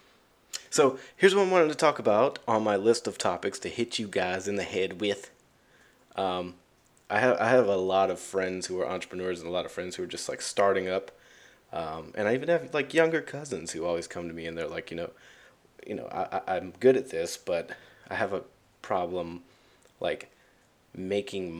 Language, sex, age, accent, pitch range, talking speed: English, male, 30-49, American, 90-130 Hz, 215 wpm